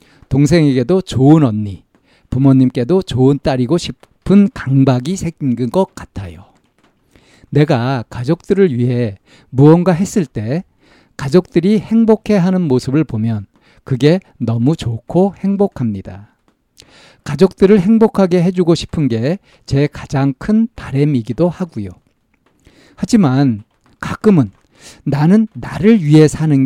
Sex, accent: male, native